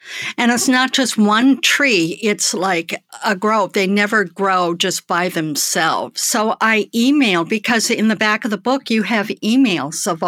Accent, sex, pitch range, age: American, female, 190-240 Hz, 60-79